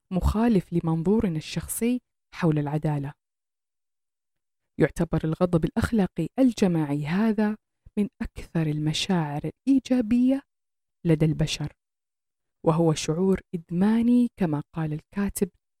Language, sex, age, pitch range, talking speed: Arabic, female, 30-49, 155-230 Hz, 85 wpm